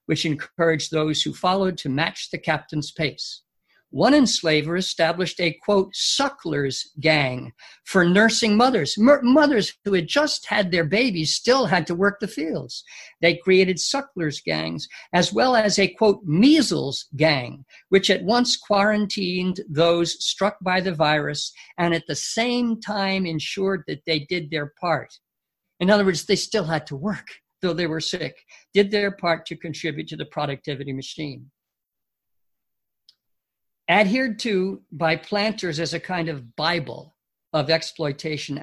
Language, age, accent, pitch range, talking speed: English, 50-69, American, 155-210 Hz, 150 wpm